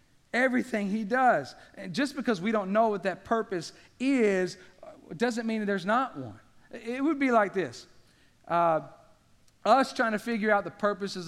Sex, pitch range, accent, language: male, 195-270 Hz, American, English